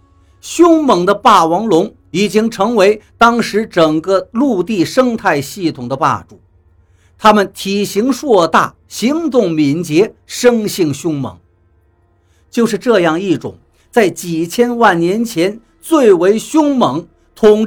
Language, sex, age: Chinese, male, 50-69